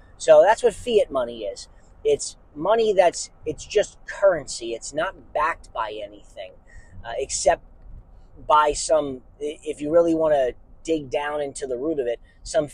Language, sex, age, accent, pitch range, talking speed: English, male, 30-49, American, 115-155 Hz, 160 wpm